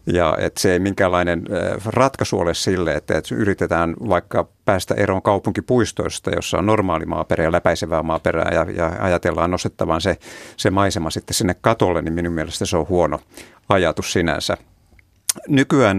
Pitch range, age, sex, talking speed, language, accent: 85-105 Hz, 50-69, male, 145 wpm, Finnish, native